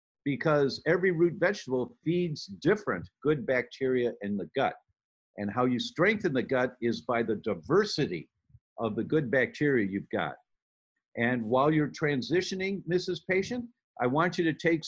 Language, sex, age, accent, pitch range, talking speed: English, male, 50-69, American, 120-175 Hz, 155 wpm